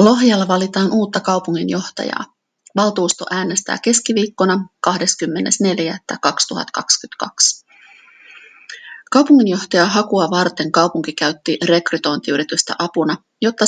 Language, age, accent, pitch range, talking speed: Finnish, 30-49, native, 175-215 Hz, 70 wpm